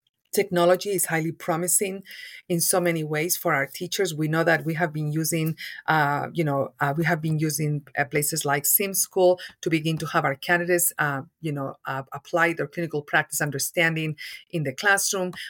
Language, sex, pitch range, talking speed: English, female, 150-175 Hz, 190 wpm